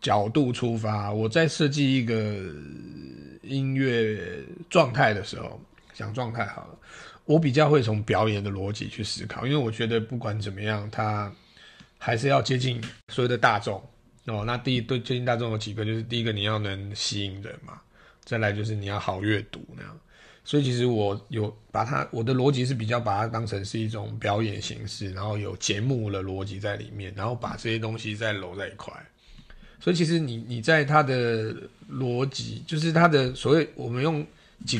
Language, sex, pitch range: Chinese, male, 105-125 Hz